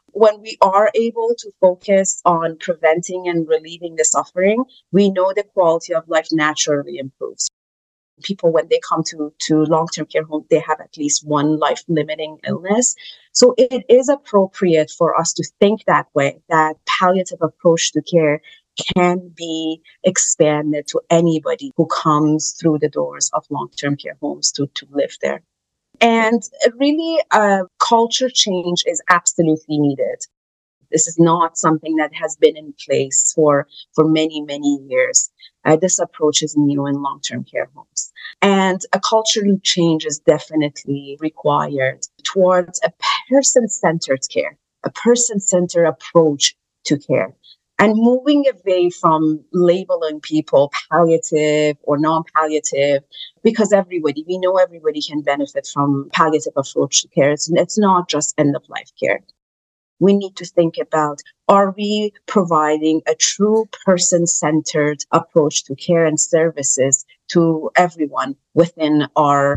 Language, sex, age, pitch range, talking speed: English, female, 30-49, 150-195 Hz, 140 wpm